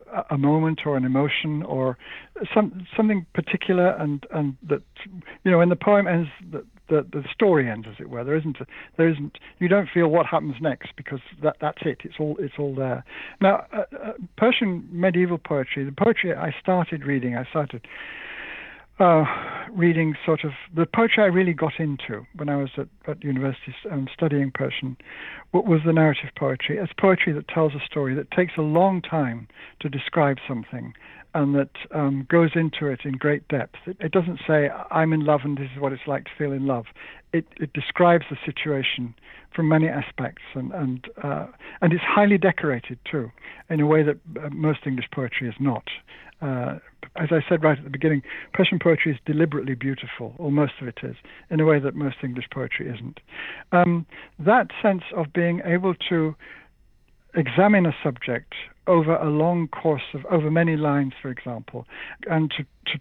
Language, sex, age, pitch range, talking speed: English, male, 60-79, 140-170 Hz, 185 wpm